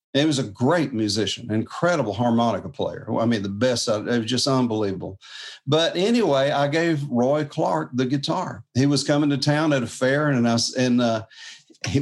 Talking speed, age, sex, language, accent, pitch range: 180 wpm, 50-69, male, English, American, 120-155 Hz